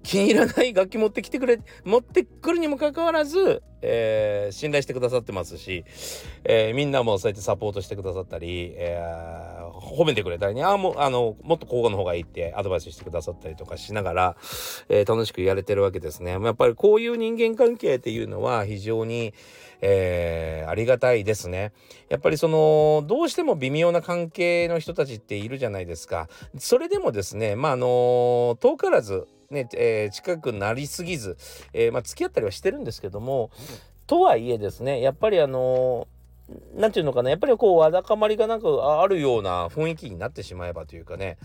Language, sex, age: Japanese, male, 40-59